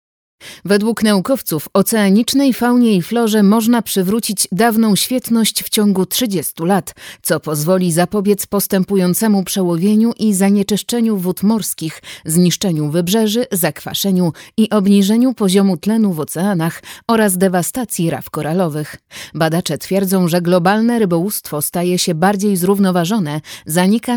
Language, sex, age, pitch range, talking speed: Polish, female, 30-49, 170-220 Hz, 115 wpm